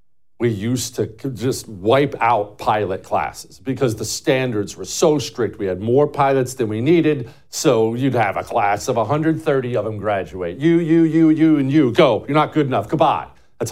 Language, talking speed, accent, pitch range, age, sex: English, 190 wpm, American, 105-135 Hz, 50-69, male